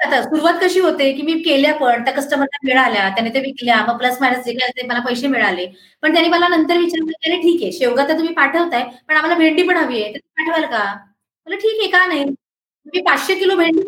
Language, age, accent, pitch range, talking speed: Marathi, 20-39, native, 265-360 Hz, 210 wpm